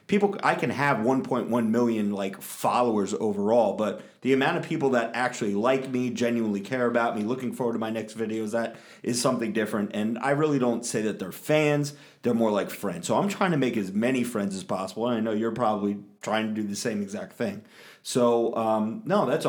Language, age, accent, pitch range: English, 30-49, American, 110-140 Hz